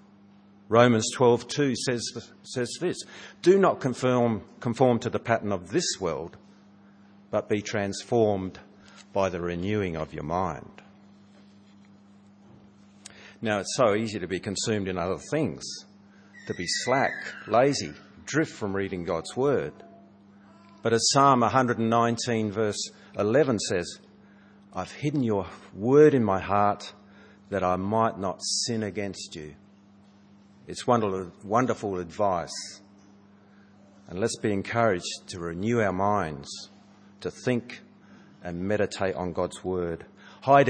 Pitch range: 100-115 Hz